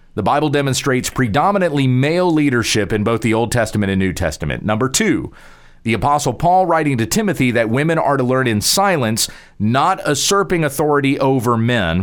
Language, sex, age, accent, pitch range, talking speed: English, male, 40-59, American, 105-140 Hz, 170 wpm